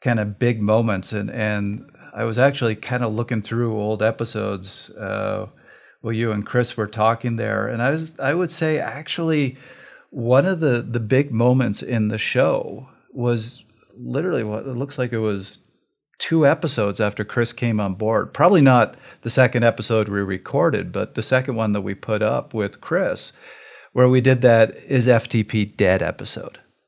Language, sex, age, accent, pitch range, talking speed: English, male, 40-59, American, 105-125 Hz, 180 wpm